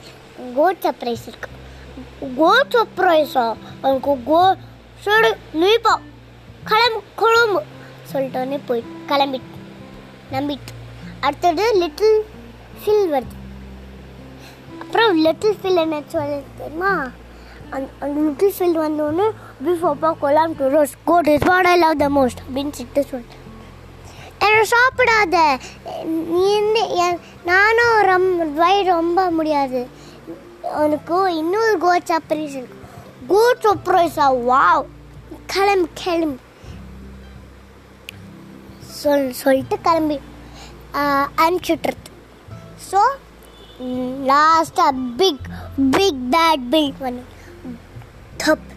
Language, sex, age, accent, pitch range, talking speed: Tamil, male, 20-39, native, 255-360 Hz, 95 wpm